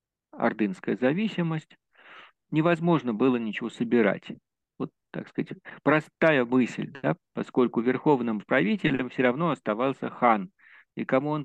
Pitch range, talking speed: 110-165 Hz, 115 wpm